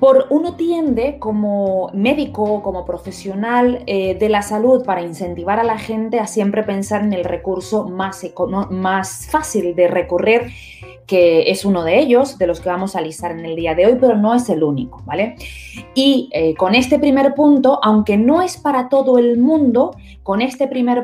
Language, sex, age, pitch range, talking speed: Spanish, female, 20-39, 180-240 Hz, 190 wpm